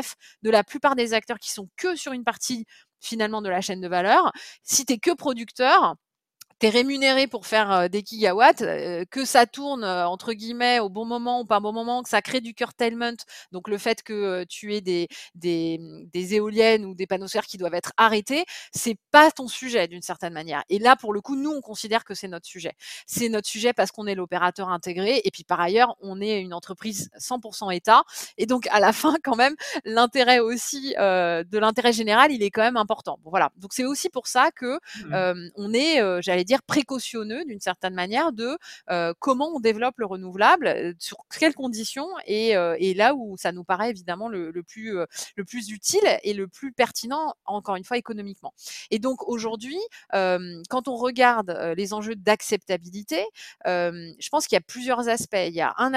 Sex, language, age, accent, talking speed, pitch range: female, French, 20-39, French, 205 wpm, 190-250 Hz